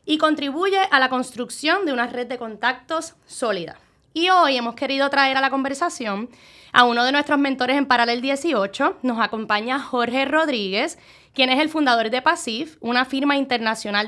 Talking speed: 170 wpm